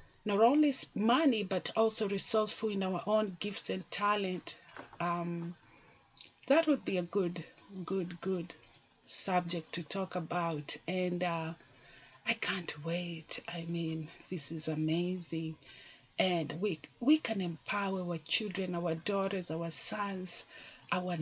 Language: English